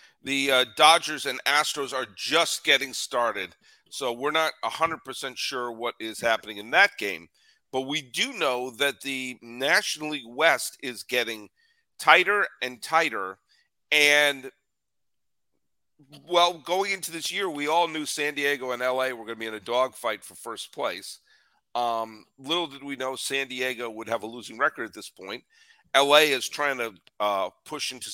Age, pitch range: 50-69, 125-160 Hz